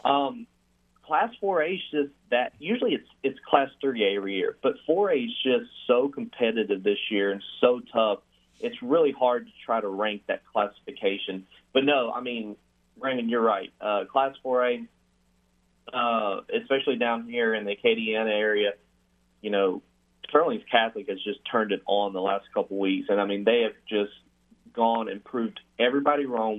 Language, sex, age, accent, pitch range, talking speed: English, male, 30-49, American, 100-125 Hz, 170 wpm